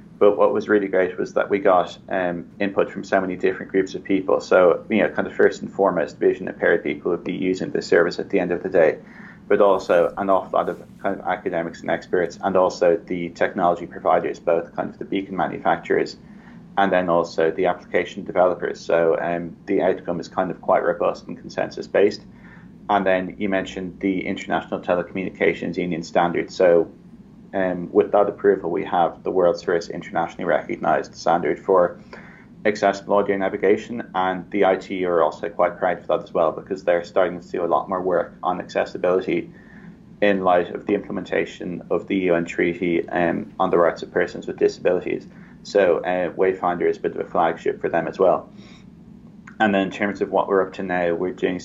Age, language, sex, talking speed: 30-49, English, male, 200 wpm